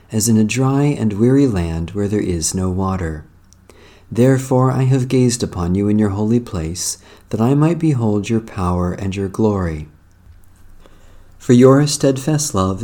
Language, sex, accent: English, male, American